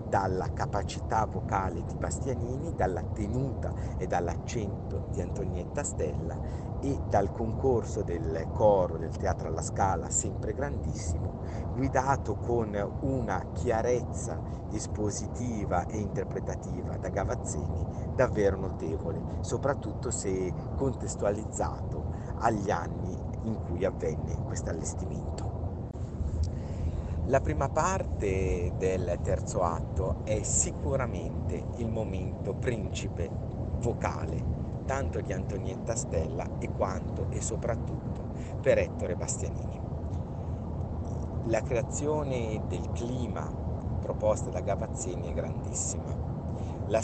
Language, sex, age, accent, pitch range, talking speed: Italian, male, 50-69, native, 85-110 Hz, 100 wpm